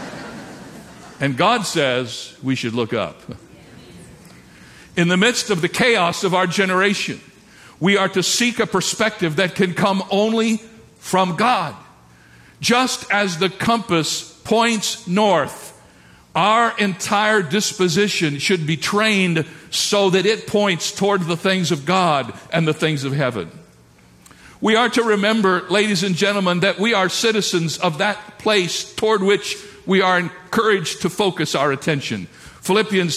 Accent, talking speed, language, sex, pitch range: American, 140 wpm, English, male, 165-215 Hz